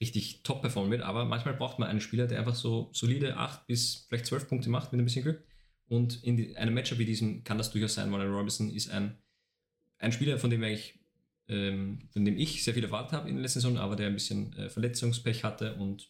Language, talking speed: German, 235 wpm